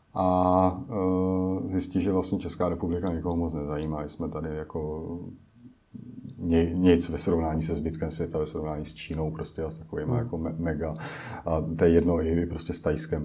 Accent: native